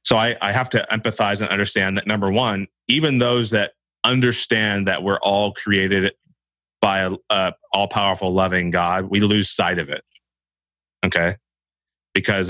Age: 30-49